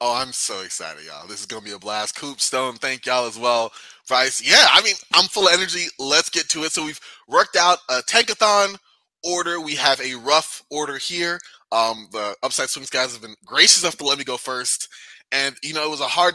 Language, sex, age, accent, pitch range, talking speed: English, male, 20-39, American, 130-175 Hz, 230 wpm